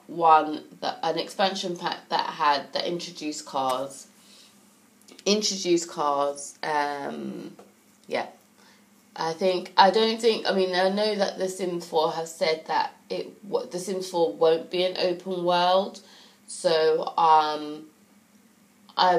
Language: English